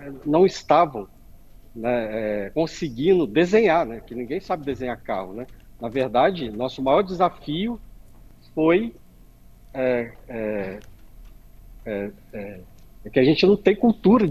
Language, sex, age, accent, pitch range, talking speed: Portuguese, male, 50-69, Brazilian, 115-175 Hz, 125 wpm